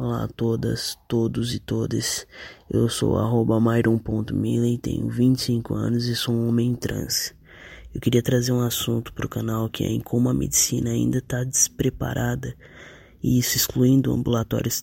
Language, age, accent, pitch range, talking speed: Portuguese, 20-39, Brazilian, 120-145 Hz, 155 wpm